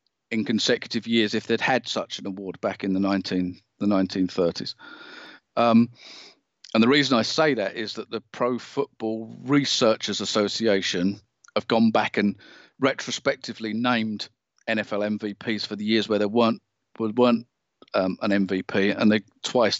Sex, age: male, 40-59